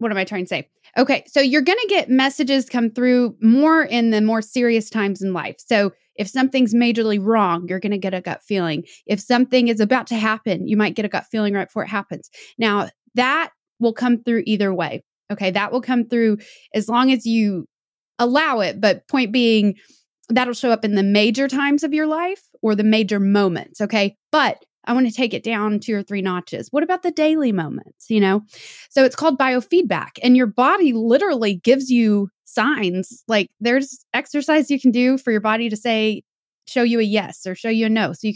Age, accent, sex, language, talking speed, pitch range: 20-39, American, female, English, 215 wpm, 205-250 Hz